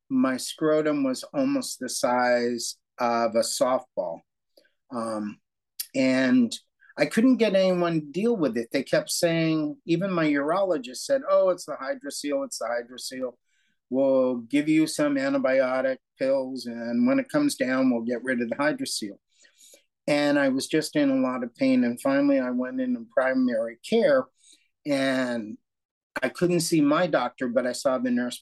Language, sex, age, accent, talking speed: English, male, 50-69, American, 165 wpm